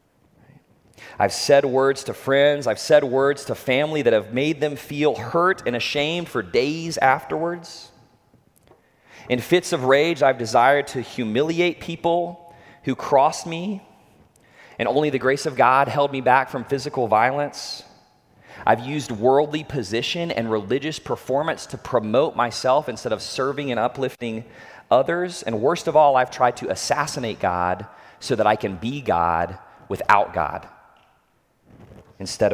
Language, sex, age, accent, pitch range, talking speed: English, male, 30-49, American, 115-150 Hz, 145 wpm